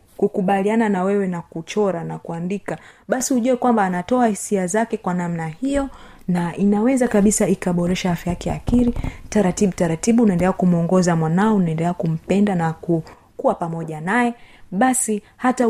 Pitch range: 175-235 Hz